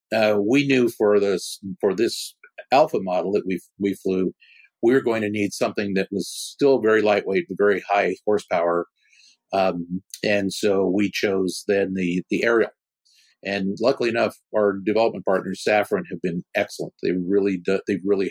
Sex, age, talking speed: male, 50-69, 165 wpm